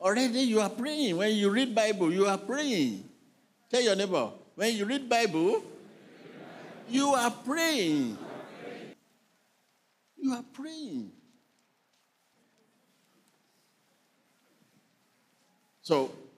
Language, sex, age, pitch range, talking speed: English, male, 60-79, 150-235 Hz, 90 wpm